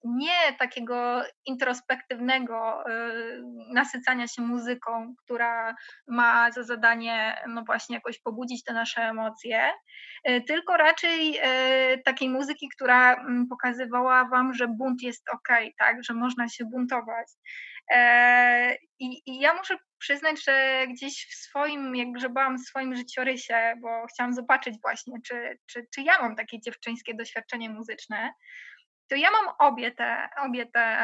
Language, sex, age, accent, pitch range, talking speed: Polish, female, 20-39, native, 235-270 Hz, 130 wpm